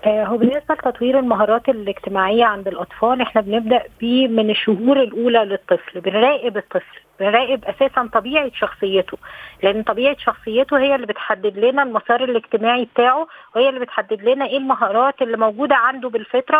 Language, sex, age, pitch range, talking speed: Arabic, female, 20-39, 225-270 Hz, 145 wpm